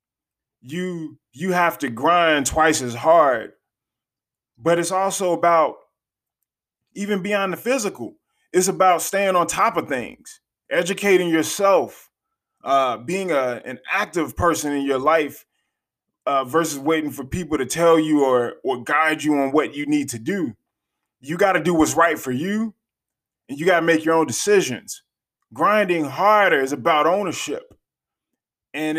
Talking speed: 155 wpm